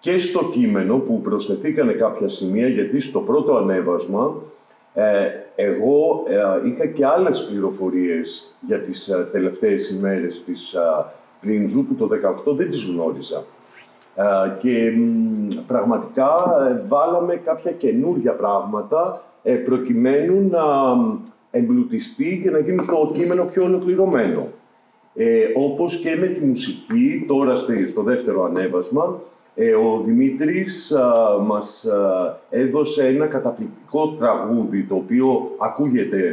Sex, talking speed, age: male, 105 wpm, 50-69